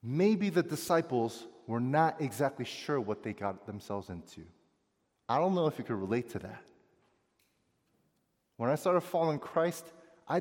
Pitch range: 115-175 Hz